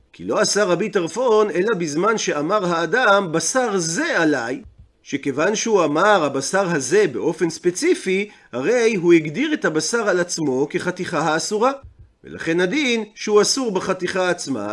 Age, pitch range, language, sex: 40-59, 165-235 Hz, Hebrew, male